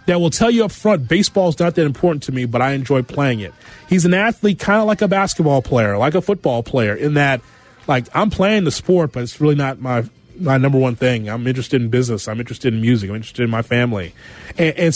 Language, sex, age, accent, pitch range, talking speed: English, male, 30-49, American, 125-170 Hz, 245 wpm